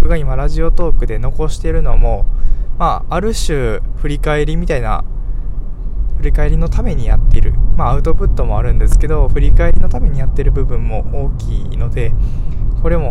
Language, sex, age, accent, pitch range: Japanese, male, 20-39, native, 95-125 Hz